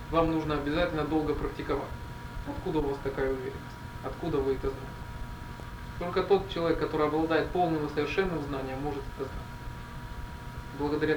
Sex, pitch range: male, 135-165 Hz